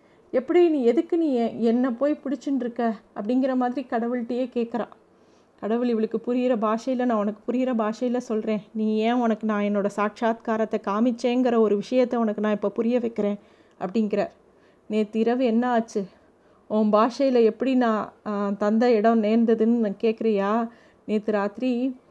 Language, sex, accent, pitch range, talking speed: Tamil, female, native, 215-250 Hz, 135 wpm